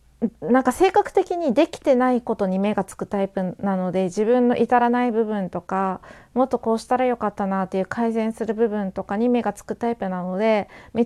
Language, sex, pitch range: Japanese, female, 195-255 Hz